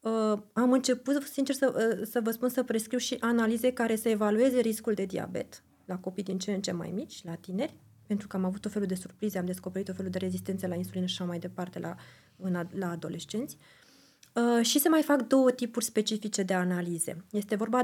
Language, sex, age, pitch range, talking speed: Romanian, female, 20-39, 185-235 Hz, 220 wpm